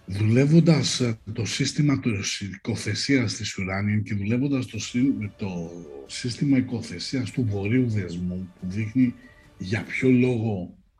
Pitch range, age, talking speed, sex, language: 90-125 Hz, 60-79, 120 wpm, male, Greek